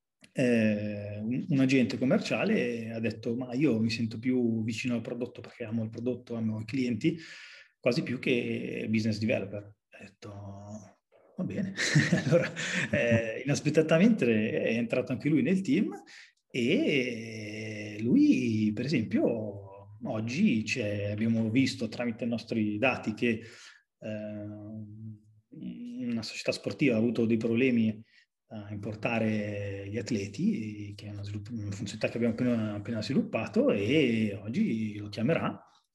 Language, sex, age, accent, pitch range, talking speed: Italian, male, 30-49, native, 105-125 Hz, 130 wpm